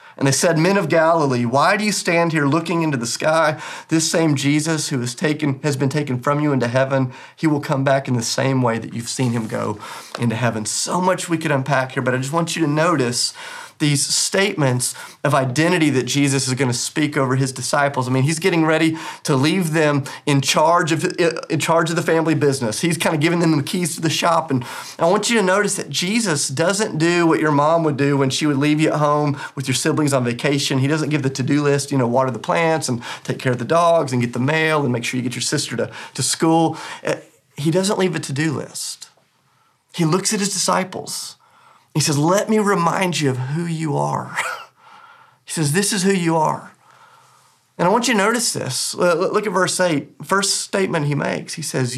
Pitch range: 140-195 Hz